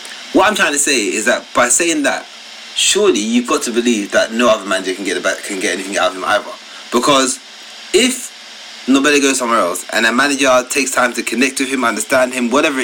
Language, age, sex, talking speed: English, 30-49, male, 225 wpm